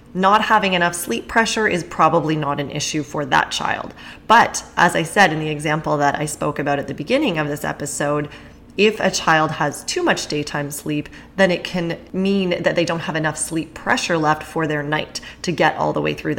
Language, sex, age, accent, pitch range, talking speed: English, female, 20-39, American, 150-185 Hz, 215 wpm